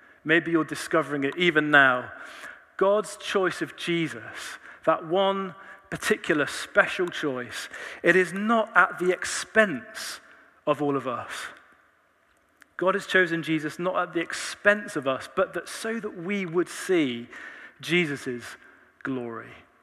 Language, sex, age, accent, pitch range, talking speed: English, male, 40-59, British, 135-190 Hz, 135 wpm